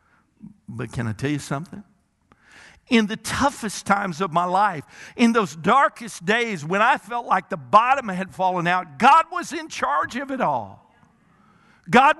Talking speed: 165 wpm